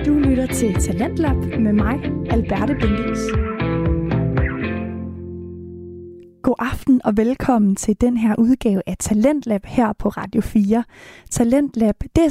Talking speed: 115 wpm